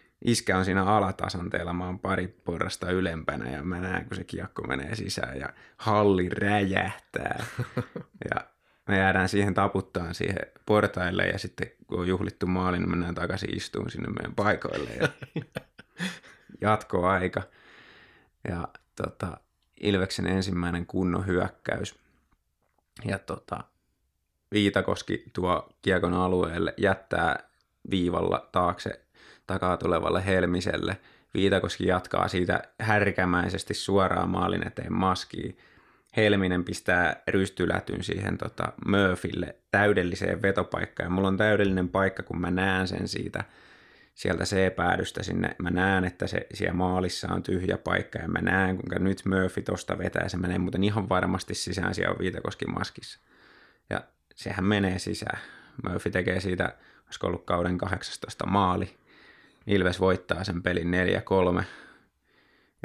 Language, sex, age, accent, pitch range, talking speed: Finnish, male, 20-39, native, 90-100 Hz, 125 wpm